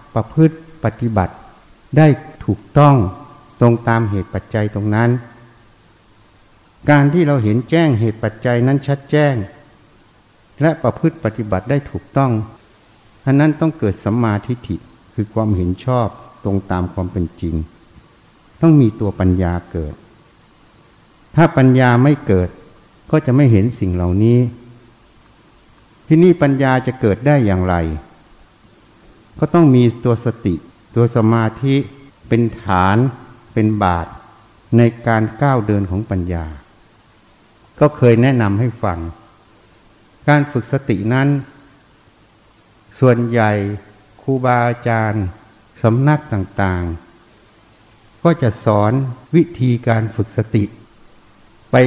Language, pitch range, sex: Thai, 105-130 Hz, male